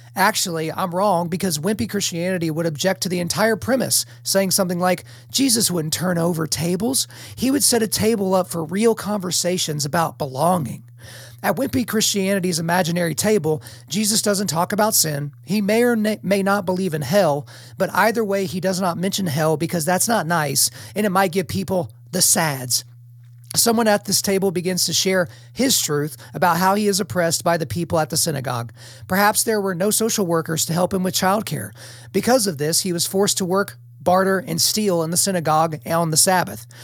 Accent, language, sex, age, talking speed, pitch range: American, English, male, 40-59, 190 wpm, 155-200 Hz